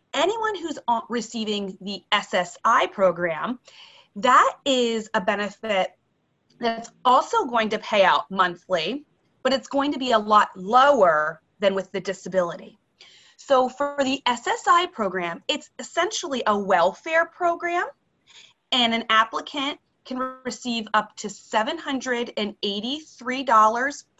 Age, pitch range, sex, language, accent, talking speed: 30-49, 190-265 Hz, female, English, American, 115 wpm